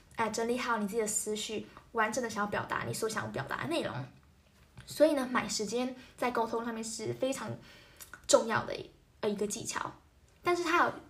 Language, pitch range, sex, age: Chinese, 215-300 Hz, female, 10-29